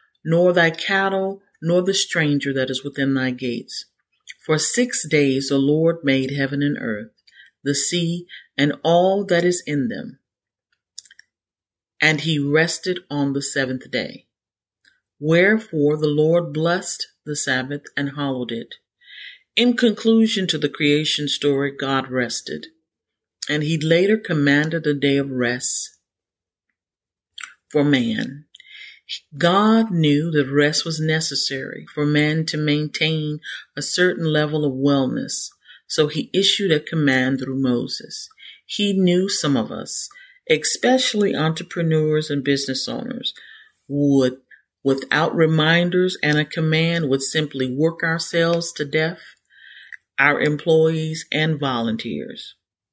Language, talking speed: English, 125 wpm